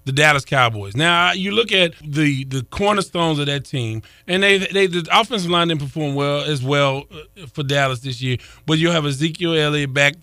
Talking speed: 205 wpm